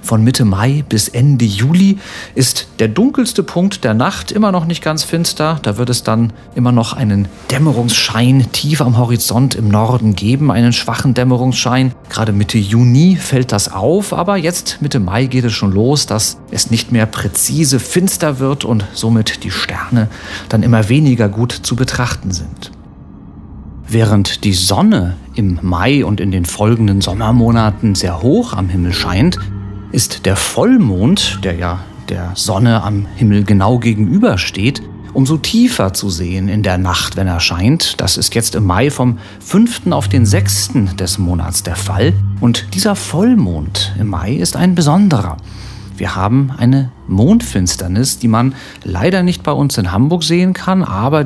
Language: German